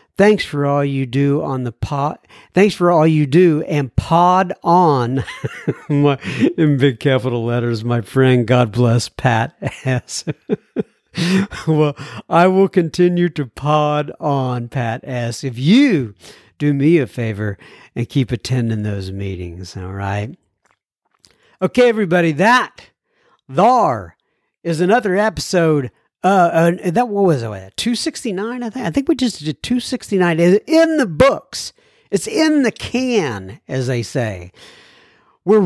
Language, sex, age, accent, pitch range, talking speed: English, male, 60-79, American, 135-210 Hz, 145 wpm